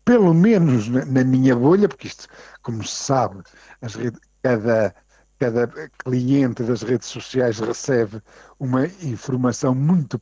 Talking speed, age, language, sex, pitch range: 130 wpm, 50-69, Portuguese, male, 130-200 Hz